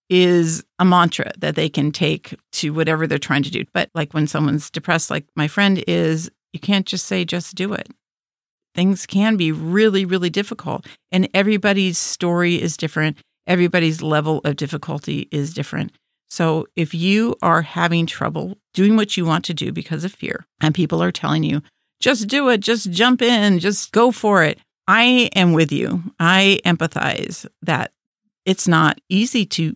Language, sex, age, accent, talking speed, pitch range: English, female, 50-69, American, 175 wpm, 160-195 Hz